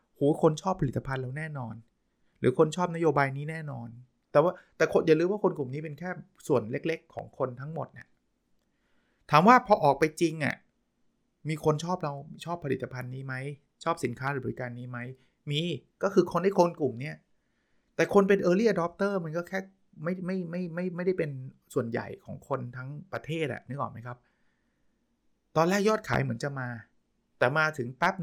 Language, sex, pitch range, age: Thai, male, 130-170 Hz, 20-39